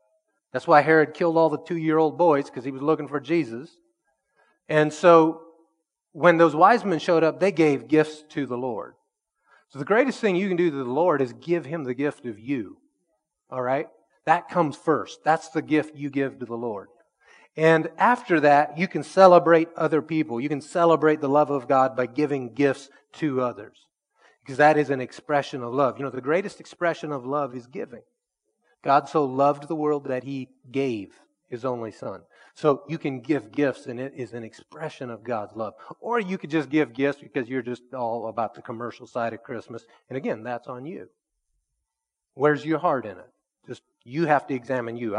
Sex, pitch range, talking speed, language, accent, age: male, 130-165 Hz, 200 wpm, English, American, 30-49